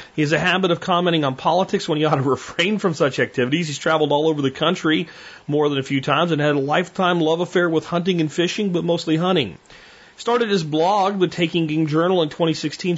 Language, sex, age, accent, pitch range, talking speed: English, male, 40-59, American, 145-200 Hz, 230 wpm